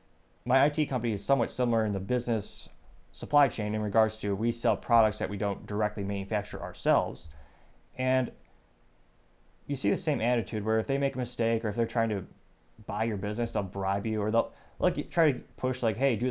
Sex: male